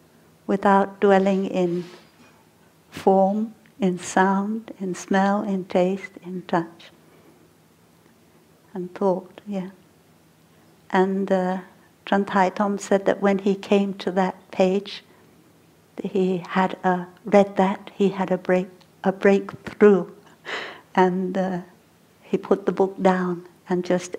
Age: 60-79